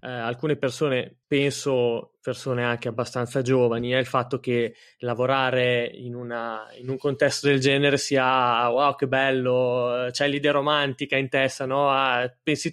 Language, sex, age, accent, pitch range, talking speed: English, male, 20-39, Italian, 130-160 Hz, 150 wpm